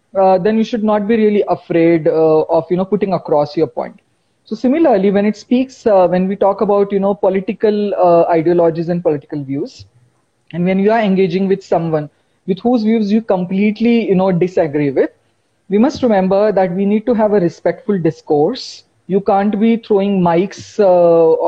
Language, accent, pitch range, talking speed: English, Indian, 170-215 Hz, 185 wpm